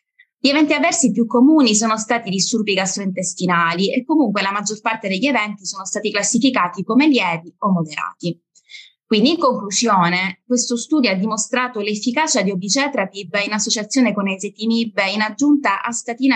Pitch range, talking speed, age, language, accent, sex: 195-245 Hz, 150 wpm, 20-39, English, Italian, female